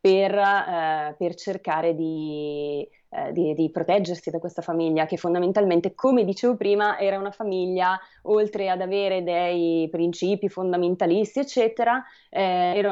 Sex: female